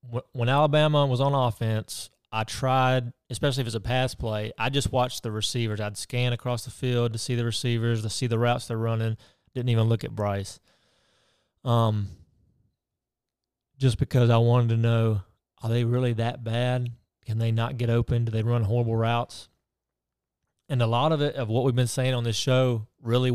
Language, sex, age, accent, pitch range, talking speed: English, male, 30-49, American, 115-130 Hz, 190 wpm